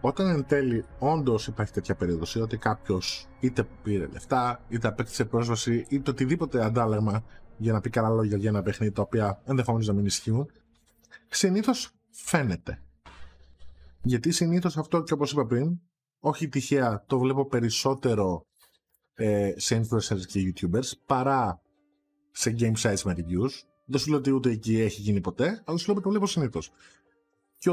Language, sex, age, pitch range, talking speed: Greek, male, 20-39, 105-150 Hz, 160 wpm